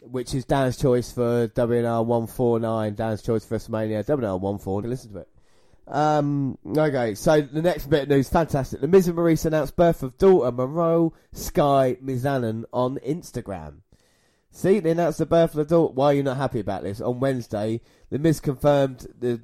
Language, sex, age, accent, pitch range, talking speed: English, male, 20-39, British, 115-140 Hz, 180 wpm